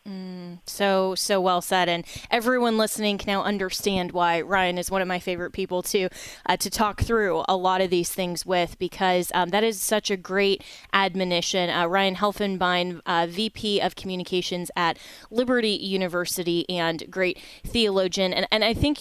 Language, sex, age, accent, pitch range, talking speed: English, female, 20-39, American, 180-205 Hz, 175 wpm